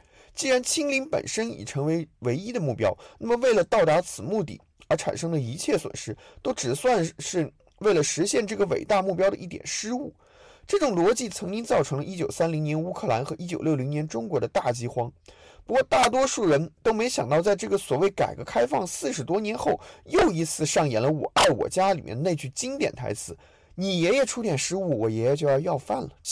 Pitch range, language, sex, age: 130-200 Hz, Chinese, male, 20-39